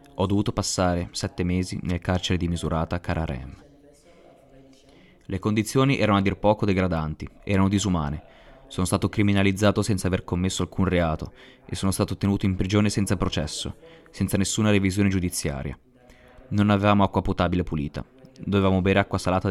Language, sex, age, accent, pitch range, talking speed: Italian, male, 20-39, native, 90-105 Hz, 150 wpm